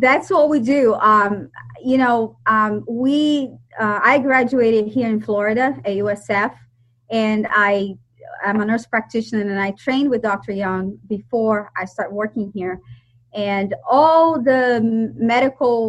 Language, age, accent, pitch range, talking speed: English, 30-49, American, 200-250 Hz, 145 wpm